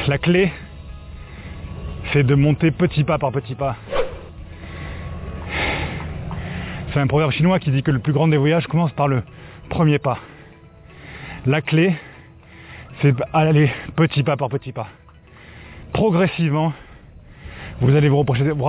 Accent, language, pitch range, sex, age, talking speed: French, French, 110-155 Hz, male, 20-39, 130 wpm